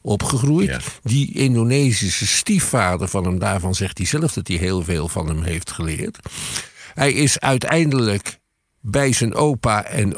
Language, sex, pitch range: Dutch, male, 100-140 Hz